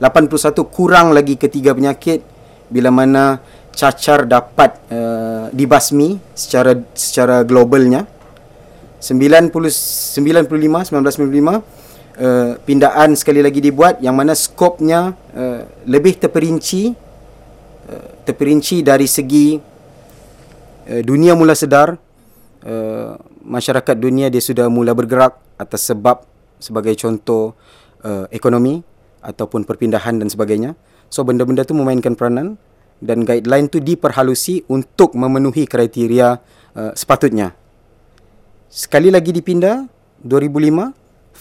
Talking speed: 105 wpm